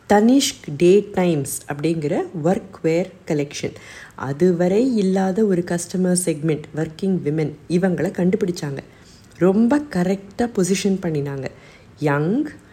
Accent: native